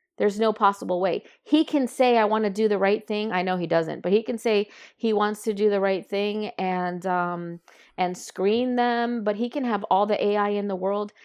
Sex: female